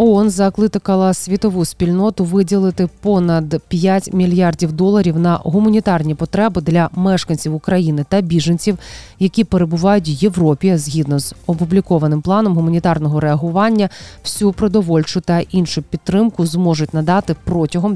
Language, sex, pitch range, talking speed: Ukrainian, female, 160-195 Hz, 115 wpm